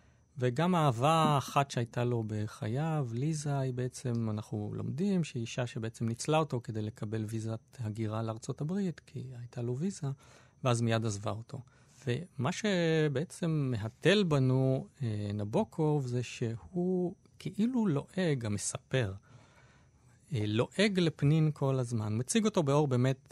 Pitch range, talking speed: 120-165 Hz, 125 wpm